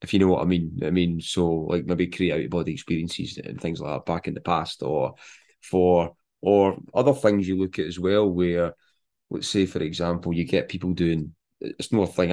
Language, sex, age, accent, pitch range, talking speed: English, male, 20-39, British, 85-95 Hz, 230 wpm